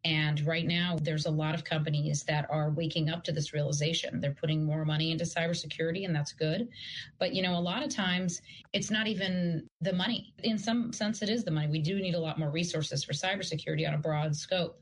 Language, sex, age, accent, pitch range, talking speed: English, female, 30-49, American, 160-215 Hz, 225 wpm